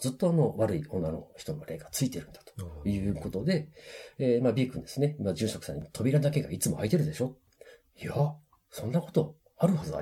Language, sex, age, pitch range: Japanese, male, 40-59, 90-155 Hz